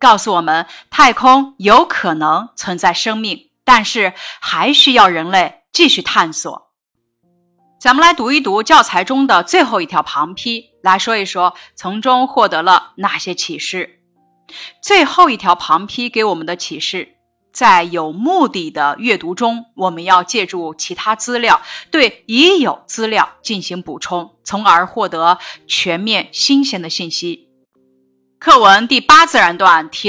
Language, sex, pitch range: Chinese, female, 170-255 Hz